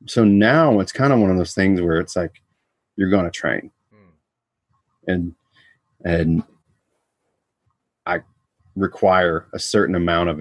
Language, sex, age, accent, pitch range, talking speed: English, male, 30-49, American, 90-110 Hz, 140 wpm